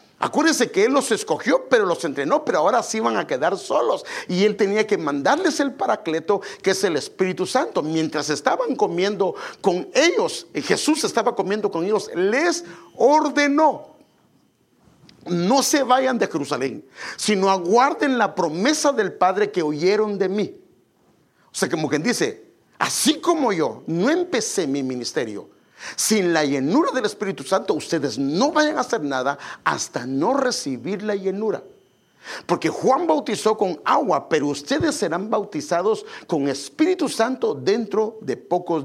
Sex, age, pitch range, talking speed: male, 50-69, 170-280 Hz, 150 wpm